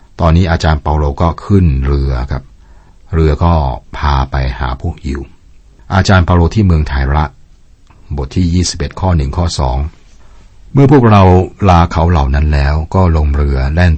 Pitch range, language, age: 70-90 Hz, Thai, 60-79